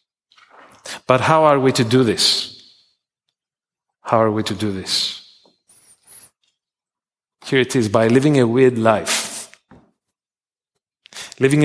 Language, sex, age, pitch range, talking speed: English, male, 40-59, 110-155 Hz, 115 wpm